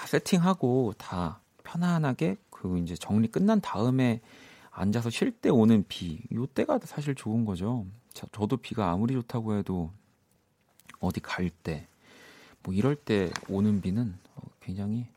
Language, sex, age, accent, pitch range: Korean, male, 40-59, native, 95-130 Hz